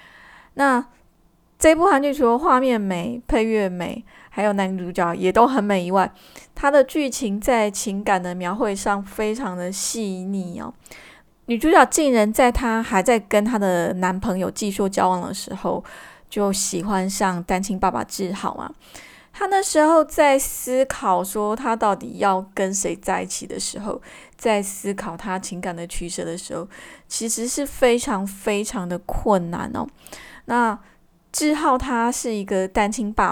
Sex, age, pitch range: female, 20-39, 195-250 Hz